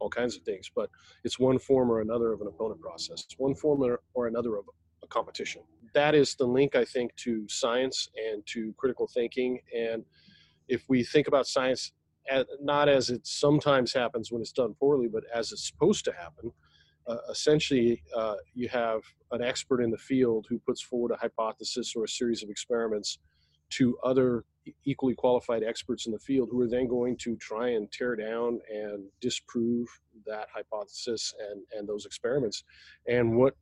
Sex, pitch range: male, 110-130 Hz